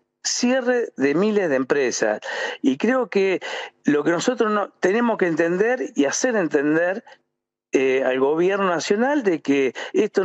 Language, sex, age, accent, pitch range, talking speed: Spanish, male, 50-69, Argentinian, 155-230 Hz, 140 wpm